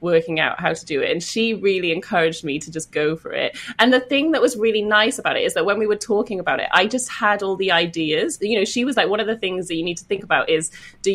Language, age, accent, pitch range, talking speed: English, 20-39, British, 165-215 Hz, 300 wpm